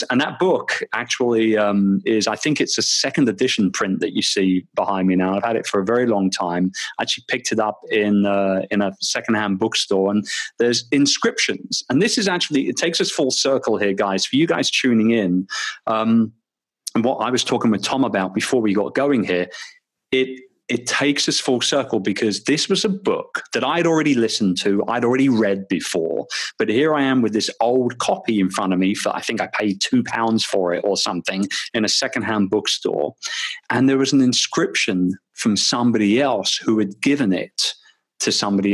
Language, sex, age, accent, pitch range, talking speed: English, male, 30-49, British, 100-130 Hz, 205 wpm